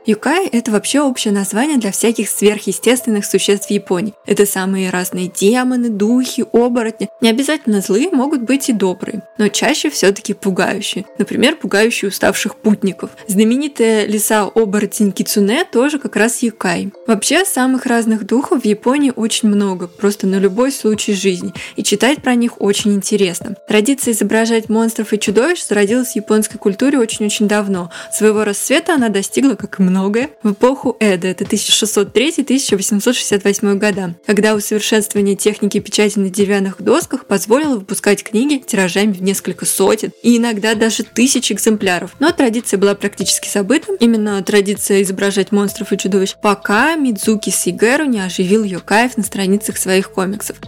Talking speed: 150 wpm